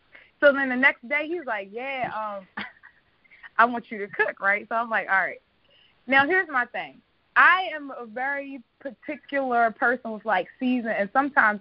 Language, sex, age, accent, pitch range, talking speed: English, female, 20-39, American, 210-285 Hz, 180 wpm